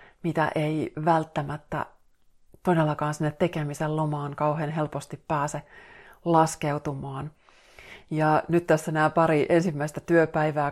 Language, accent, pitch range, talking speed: Finnish, native, 150-165 Hz, 100 wpm